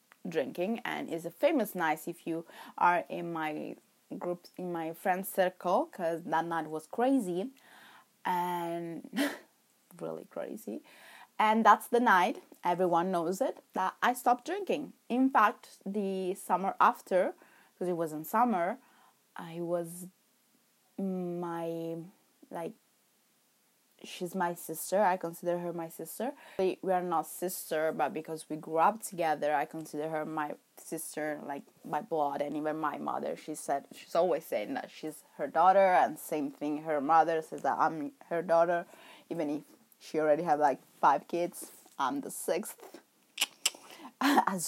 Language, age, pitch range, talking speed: English, 20-39, 160-205 Hz, 150 wpm